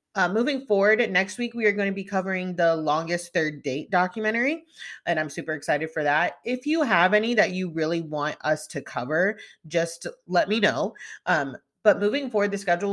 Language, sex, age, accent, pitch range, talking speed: English, female, 30-49, American, 150-210 Hz, 200 wpm